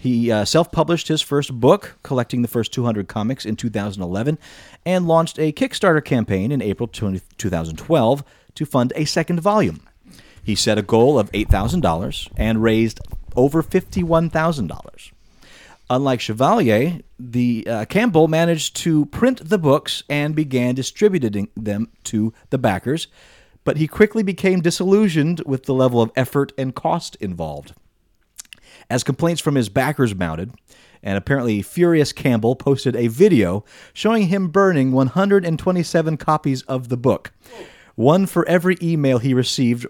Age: 30-49